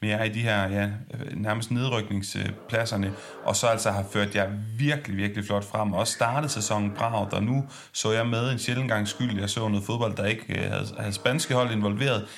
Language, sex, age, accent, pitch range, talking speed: Danish, male, 30-49, native, 105-140 Hz, 205 wpm